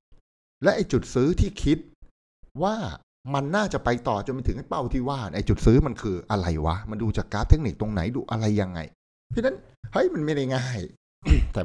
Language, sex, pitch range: Thai, male, 95-135 Hz